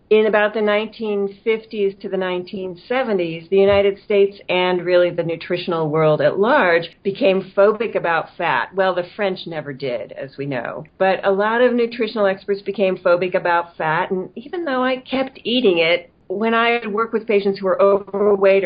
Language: English